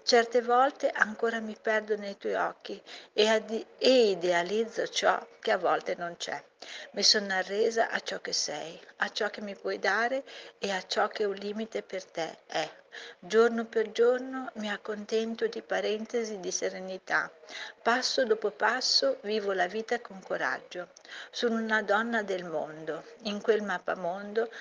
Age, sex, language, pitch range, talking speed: 50-69, female, Italian, 185-230 Hz, 155 wpm